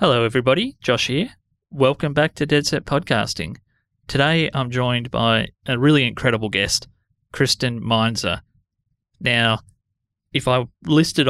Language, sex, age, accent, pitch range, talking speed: English, male, 20-39, Australian, 110-135 Hz, 120 wpm